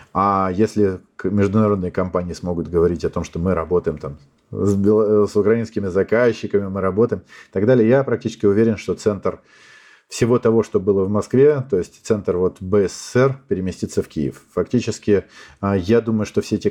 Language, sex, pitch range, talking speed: Russian, male, 95-110 Hz, 160 wpm